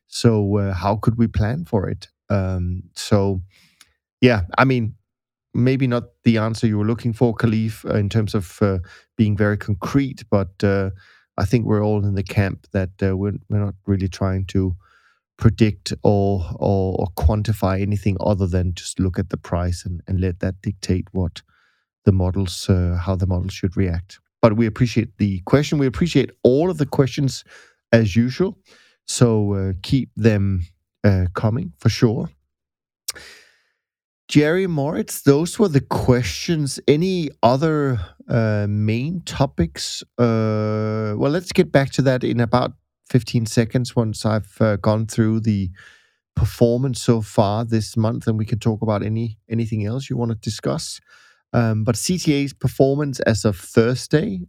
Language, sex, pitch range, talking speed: English, male, 100-125 Hz, 160 wpm